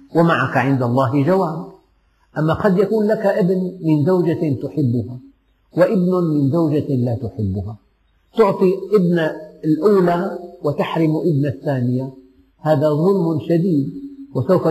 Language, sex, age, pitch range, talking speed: Arabic, male, 50-69, 135-175 Hz, 110 wpm